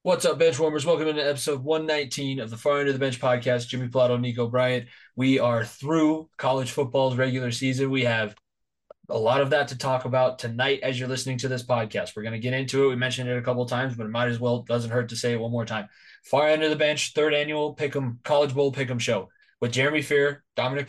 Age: 20-39